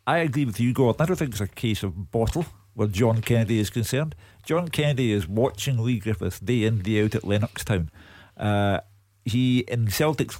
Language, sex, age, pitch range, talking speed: English, male, 50-69, 105-135 Hz, 200 wpm